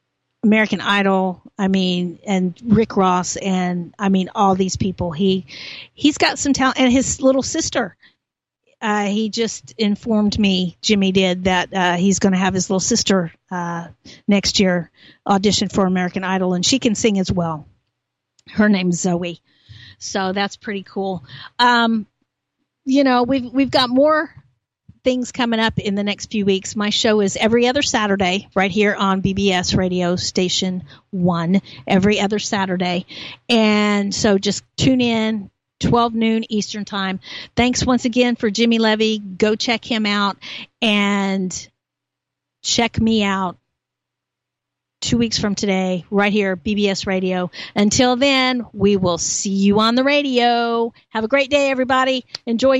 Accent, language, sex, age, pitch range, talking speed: American, English, female, 50-69, 185-230 Hz, 155 wpm